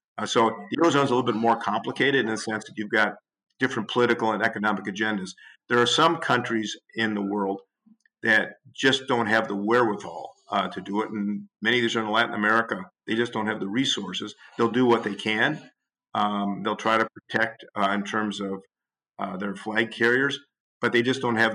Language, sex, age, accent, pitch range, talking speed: English, male, 50-69, American, 105-115 Hz, 210 wpm